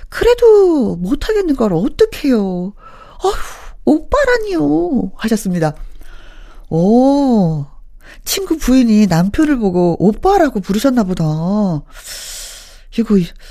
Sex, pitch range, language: female, 180-270 Hz, Korean